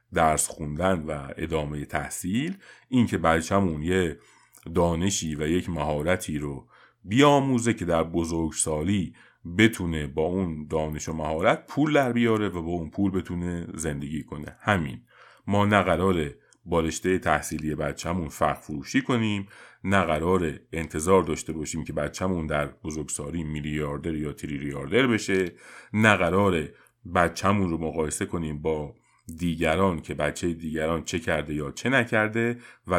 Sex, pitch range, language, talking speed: male, 75-95 Hz, Persian, 125 wpm